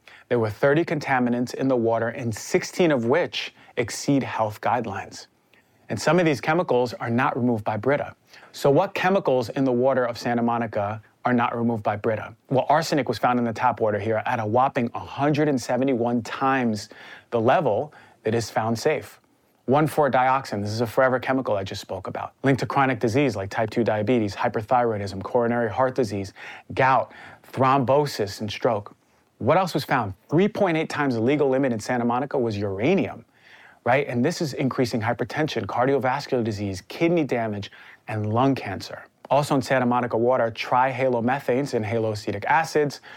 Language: English